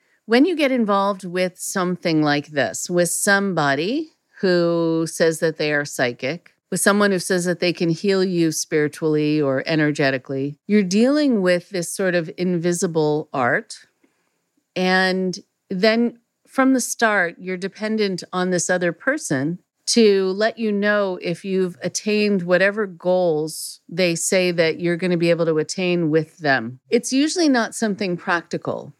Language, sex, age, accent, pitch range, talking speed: English, female, 50-69, American, 165-205 Hz, 150 wpm